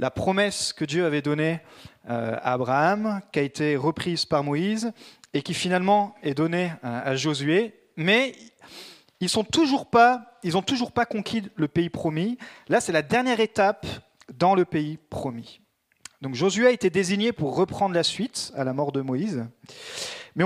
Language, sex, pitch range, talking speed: French, male, 145-210 Hz, 160 wpm